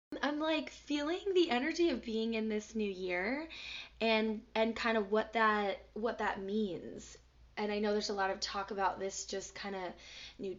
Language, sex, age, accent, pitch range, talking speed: English, female, 10-29, American, 190-230 Hz, 185 wpm